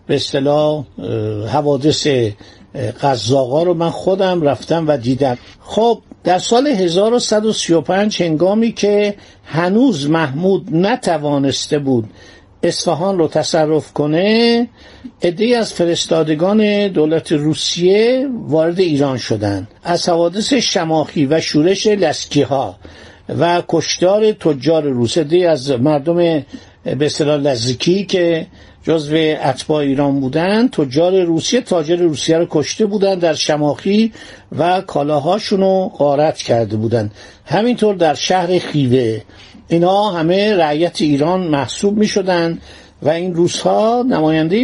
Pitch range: 145-185 Hz